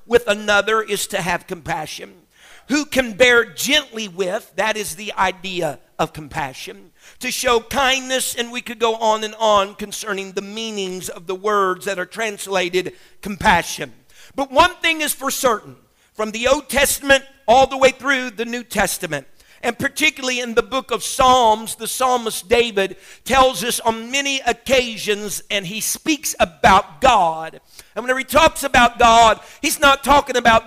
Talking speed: 165 wpm